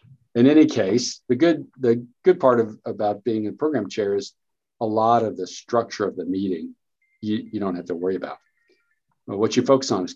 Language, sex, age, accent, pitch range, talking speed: English, male, 50-69, American, 95-115 Hz, 215 wpm